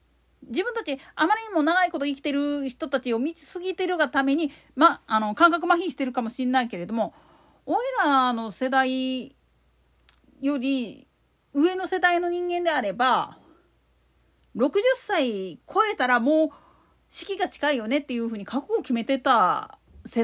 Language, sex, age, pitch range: Japanese, female, 40-59, 230-330 Hz